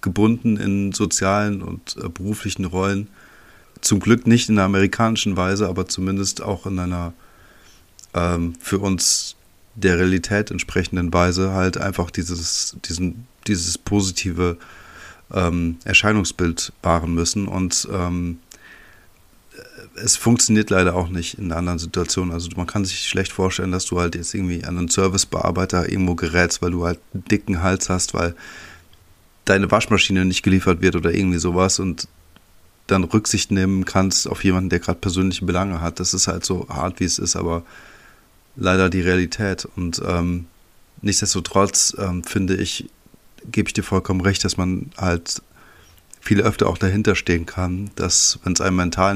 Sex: male